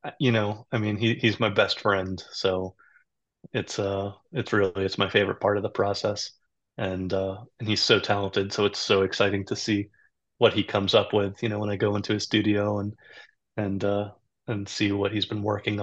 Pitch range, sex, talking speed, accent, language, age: 100-110 Hz, male, 200 wpm, American, English, 30-49